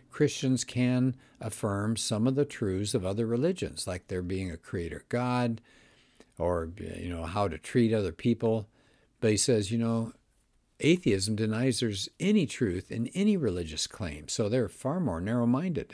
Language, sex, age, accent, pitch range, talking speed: English, male, 60-79, American, 90-120 Hz, 160 wpm